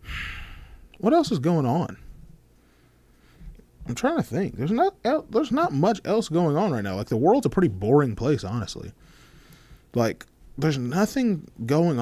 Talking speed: 155 wpm